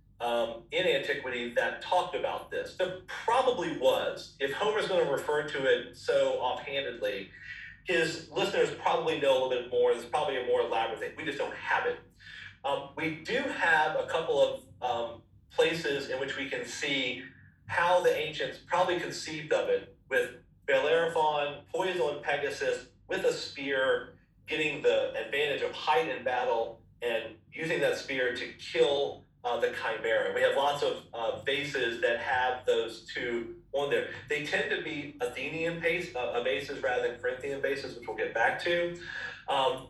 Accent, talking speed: American, 170 wpm